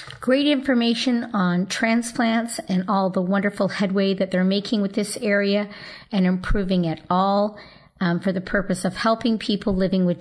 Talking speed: 165 wpm